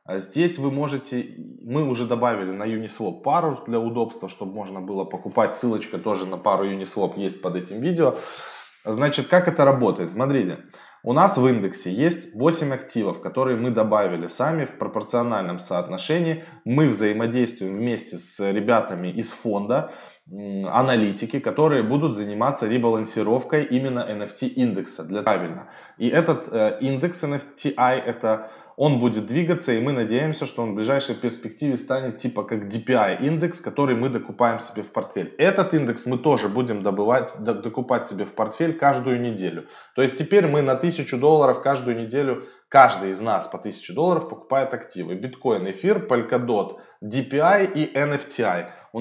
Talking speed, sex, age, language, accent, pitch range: 145 wpm, male, 20-39, Russian, native, 110-145 Hz